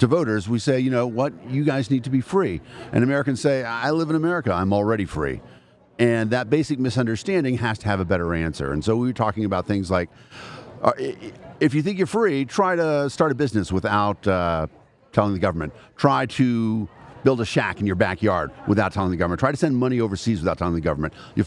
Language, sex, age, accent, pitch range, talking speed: English, male, 50-69, American, 95-130 Hz, 220 wpm